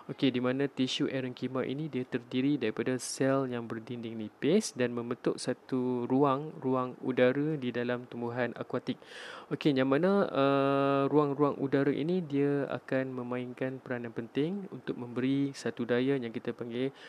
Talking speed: 145 wpm